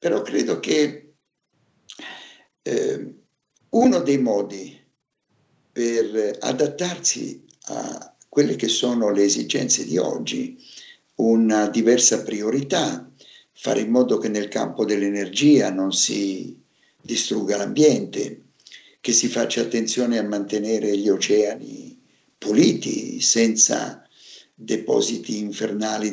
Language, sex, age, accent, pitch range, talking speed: Italian, male, 60-79, native, 105-150 Hz, 100 wpm